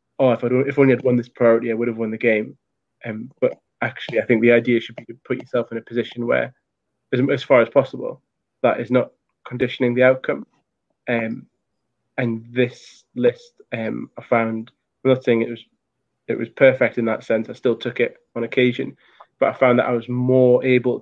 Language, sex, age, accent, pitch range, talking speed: English, male, 20-39, British, 115-130 Hz, 210 wpm